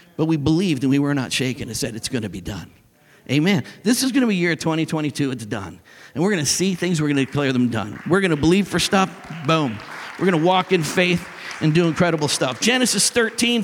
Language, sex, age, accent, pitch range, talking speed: English, male, 50-69, American, 140-215 Hz, 220 wpm